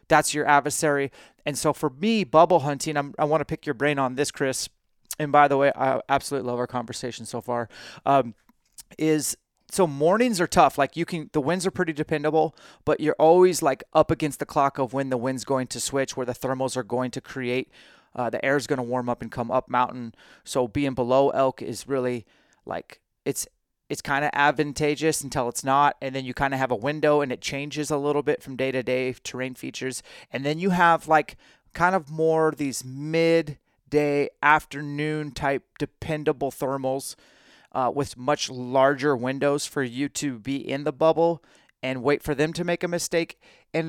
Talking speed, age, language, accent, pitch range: 200 wpm, 30-49, English, American, 130-155 Hz